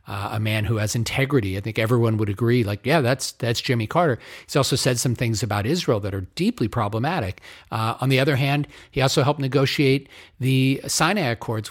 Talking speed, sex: 205 wpm, male